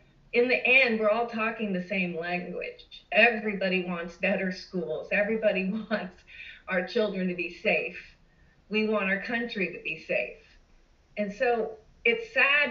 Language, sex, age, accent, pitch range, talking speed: English, female, 40-59, American, 185-230 Hz, 145 wpm